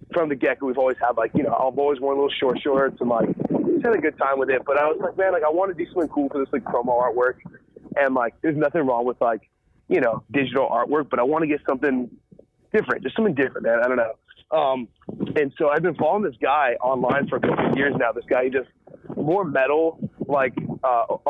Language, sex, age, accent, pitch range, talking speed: English, male, 30-49, American, 125-160 Hz, 255 wpm